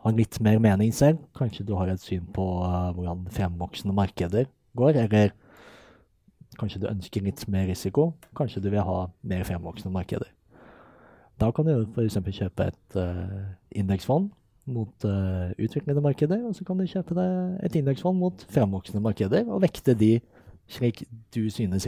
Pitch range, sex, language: 95-130 Hz, male, English